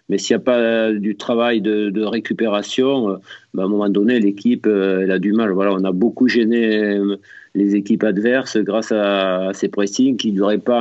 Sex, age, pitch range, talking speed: male, 50-69, 100-120 Hz, 220 wpm